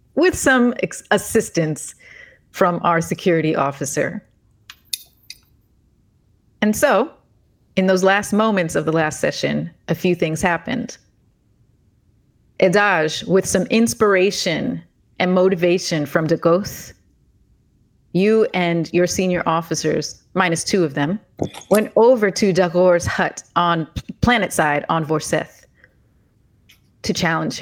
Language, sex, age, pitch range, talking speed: English, female, 30-49, 155-195 Hz, 110 wpm